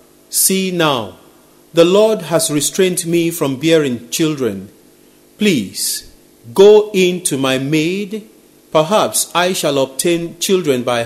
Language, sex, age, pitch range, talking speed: English, male, 40-59, 140-190 Hz, 120 wpm